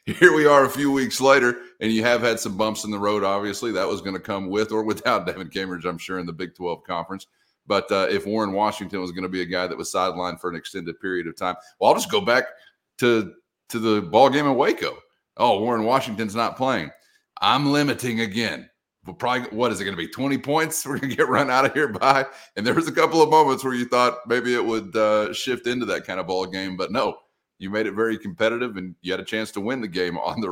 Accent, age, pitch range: American, 30-49, 90-115 Hz